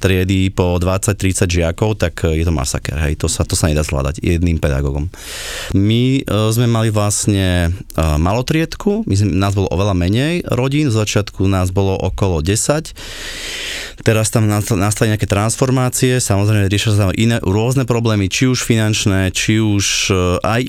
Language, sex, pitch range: Slovak, male, 90-110 Hz